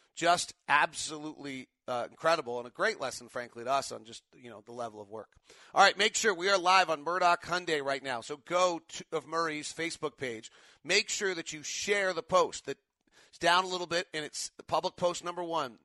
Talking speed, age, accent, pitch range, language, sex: 215 wpm, 40-59, American, 140-175 Hz, English, male